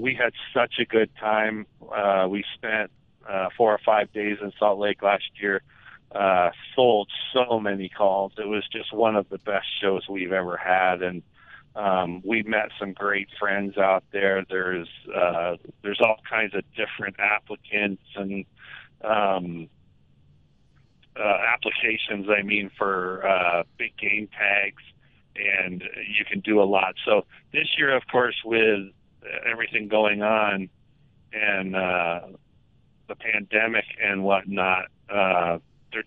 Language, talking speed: English, 145 wpm